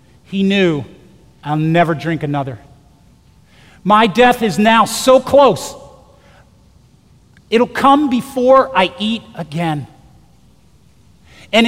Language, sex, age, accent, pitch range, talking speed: English, male, 40-59, American, 155-235 Hz, 100 wpm